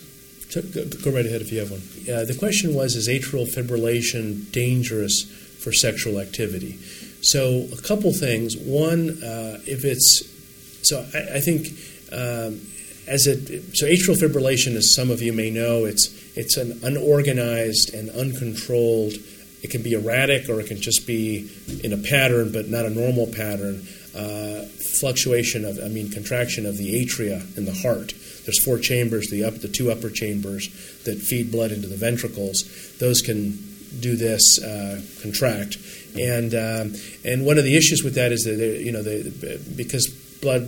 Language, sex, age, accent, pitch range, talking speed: English, male, 40-59, American, 105-125 Hz, 180 wpm